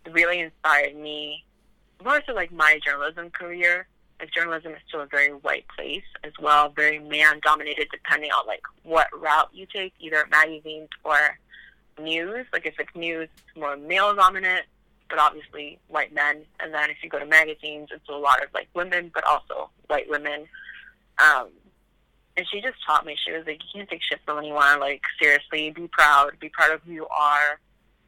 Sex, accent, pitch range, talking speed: female, American, 150-175 Hz, 185 wpm